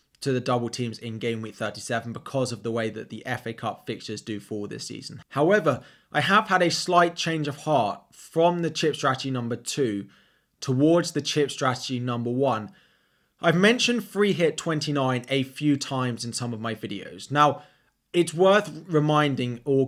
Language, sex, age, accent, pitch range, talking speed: English, male, 20-39, British, 120-150 Hz, 180 wpm